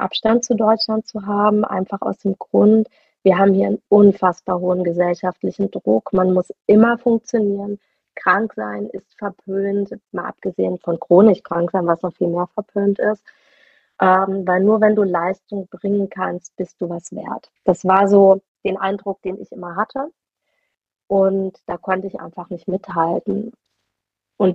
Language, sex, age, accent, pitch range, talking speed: German, female, 30-49, German, 185-220 Hz, 160 wpm